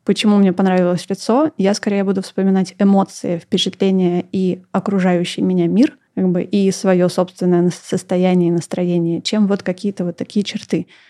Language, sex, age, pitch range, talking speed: Russian, female, 20-39, 185-215 Hz, 150 wpm